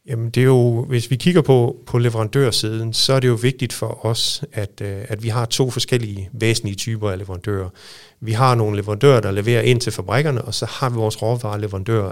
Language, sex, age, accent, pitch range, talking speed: Danish, male, 40-59, native, 105-120 Hz, 210 wpm